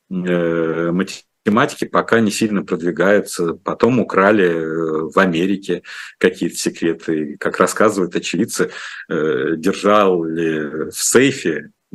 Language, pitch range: Russian, 80-100 Hz